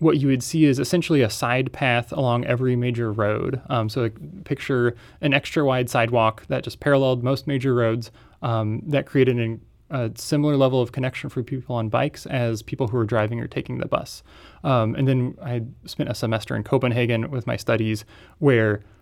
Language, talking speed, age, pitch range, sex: English, 190 wpm, 20-39, 115-135 Hz, male